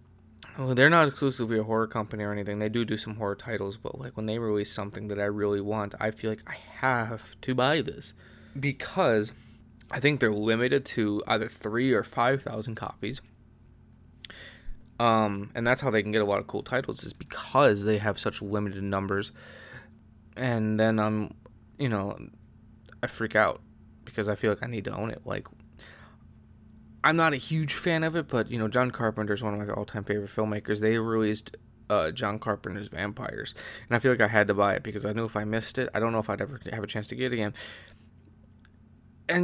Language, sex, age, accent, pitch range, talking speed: English, male, 20-39, American, 105-120 Hz, 205 wpm